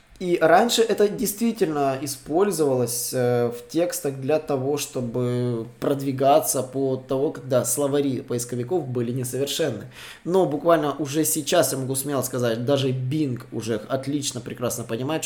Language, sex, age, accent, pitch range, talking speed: Russian, male, 20-39, native, 130-160 Hz, 125 wpm